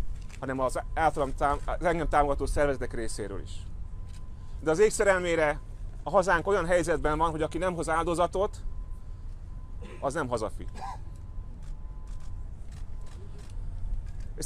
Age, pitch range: 30-49, 95-155 Hz